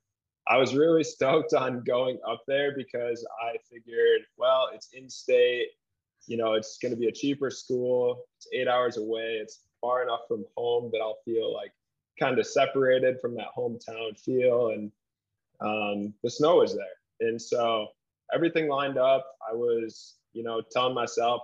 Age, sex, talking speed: 20-39, male, 165 wpm